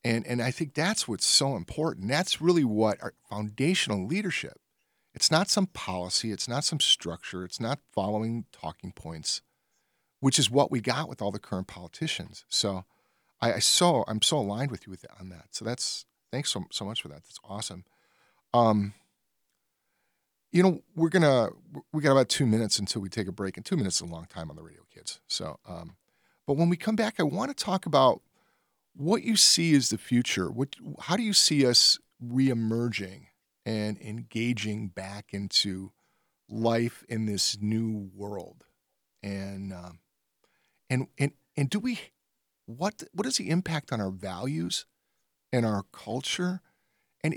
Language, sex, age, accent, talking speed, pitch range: English, male, 40-59, American, 175 wpm, 100-145 Hz